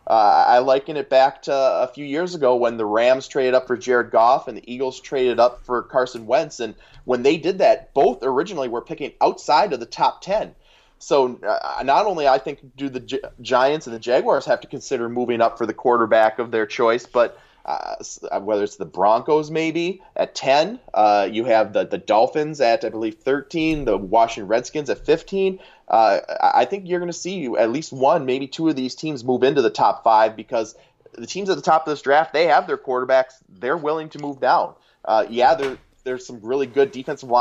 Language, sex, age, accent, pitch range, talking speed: English, male, 20-39, American, 120-150 Hz, 210 wpm